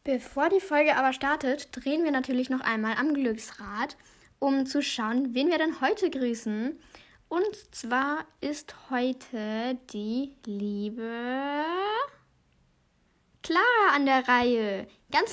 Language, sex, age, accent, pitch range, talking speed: German, female, 10-29, German, 230-280 Hz, 120 wpm